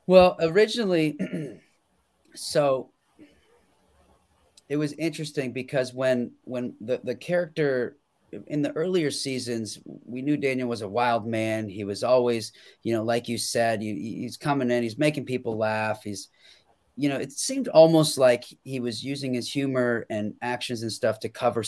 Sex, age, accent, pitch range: male, 30-49, American, 110-140 Hz